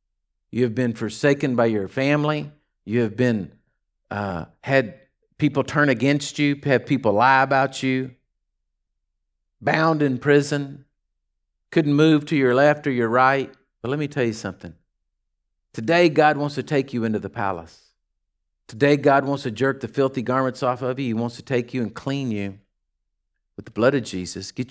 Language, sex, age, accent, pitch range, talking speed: English, male, 50-69, American, 105-145 Hz, 175 wpm